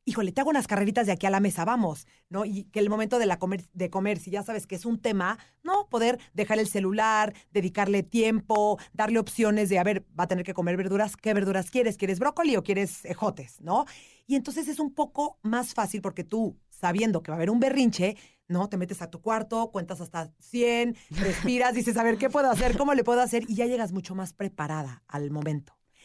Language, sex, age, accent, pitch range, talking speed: Spanish, female, 40-59, Mexican, 180-225 Hz, 230 wpm